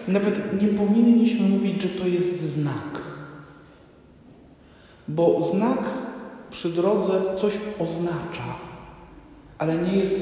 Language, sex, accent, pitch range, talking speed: Polish, male, native, 155-190 Hz, 100 wpm